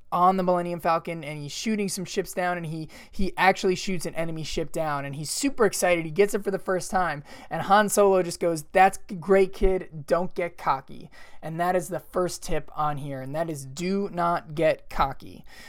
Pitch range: 150-185 Hz